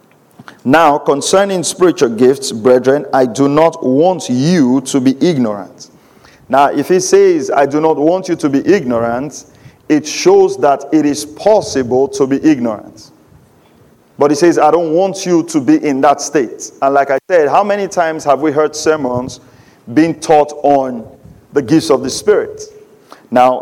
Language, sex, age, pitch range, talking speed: English, male, 50-69, 140-195 Hz, 170 wpm